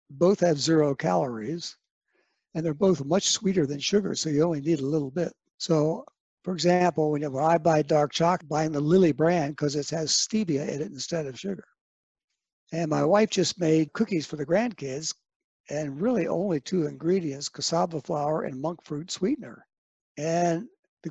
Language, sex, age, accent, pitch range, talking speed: English, male, 60-79, American, 145-180 Hz, 175 wpm